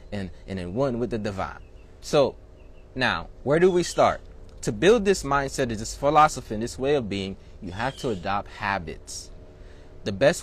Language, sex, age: English, male, 20-39